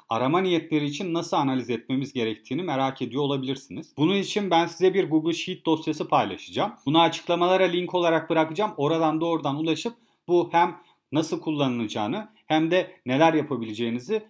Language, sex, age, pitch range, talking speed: Turkish, male, 40-59, 140-185 Hz, 145 wpm